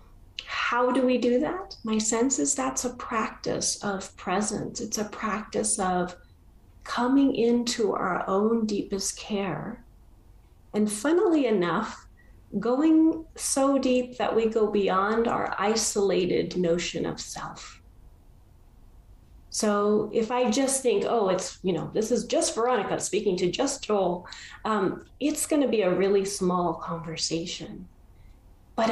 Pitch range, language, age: 180-250 Hz, English, 30-49